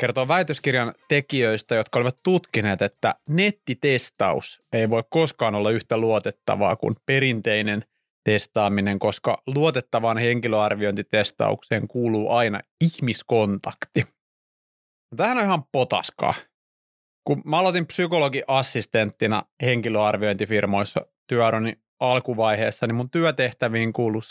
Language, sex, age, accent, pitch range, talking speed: Finnish, male, 30-49, native, 110-145 Hz, 95 wpm